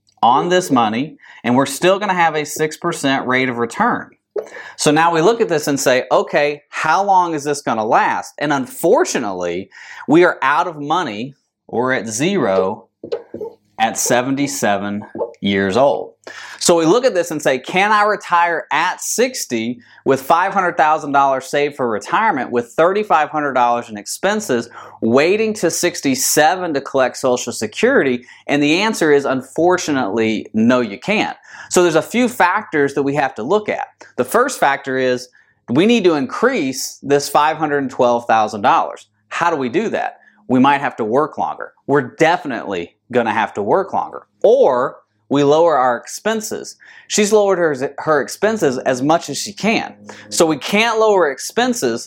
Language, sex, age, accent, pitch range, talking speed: English, male, 30-49, American, 135-210 Hz, 160 wpm